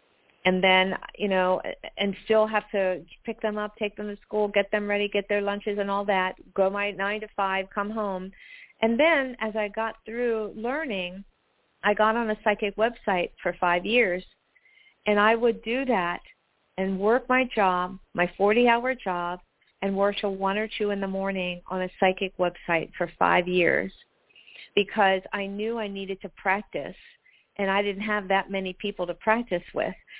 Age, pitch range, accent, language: 50-69, 180-210 Hz, American, English